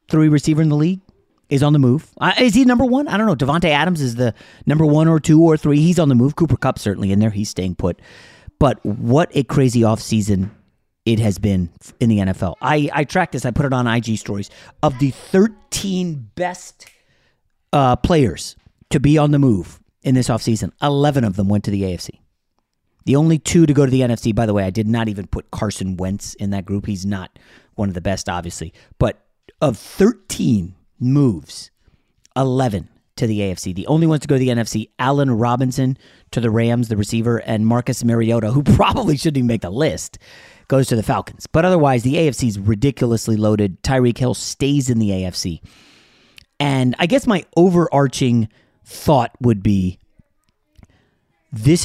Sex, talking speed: male, 195 wpm